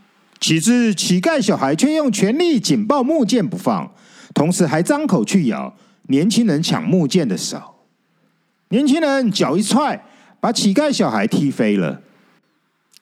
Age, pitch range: 50-69, 195-270 Hz